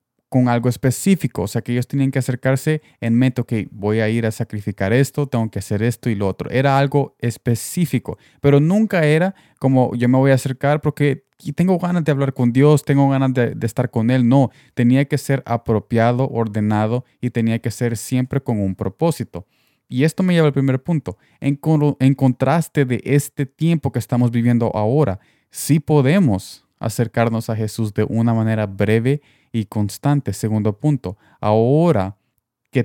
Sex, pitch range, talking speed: male, 115-140 Hz, 180 wpm